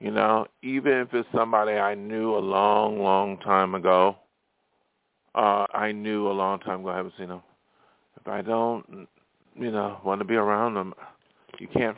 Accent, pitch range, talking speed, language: American, 105-120 Hz, 180 wpm, English